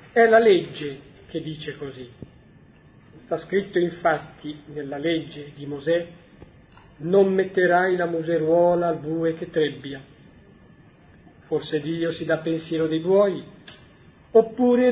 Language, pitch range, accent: Italian, 155-190 Hz, native